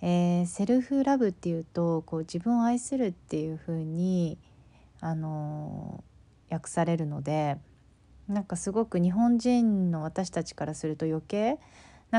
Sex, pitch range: female, 160-205 Hz